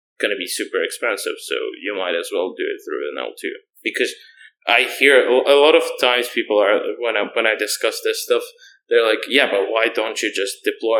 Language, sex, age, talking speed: English, male, 20-39, 220 wpm